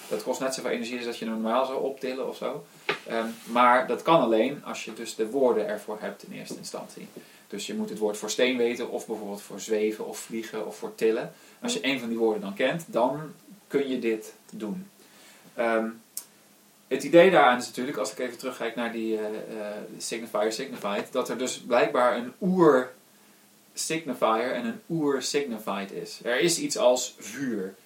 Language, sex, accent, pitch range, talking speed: Dutch, male, Dutch, 110-145 Hz, 190 wpm